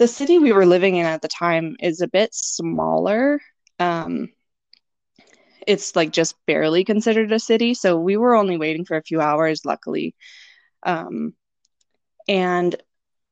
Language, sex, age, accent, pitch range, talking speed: English, female, 20-39, American, 160-215 Hz, 150 wpm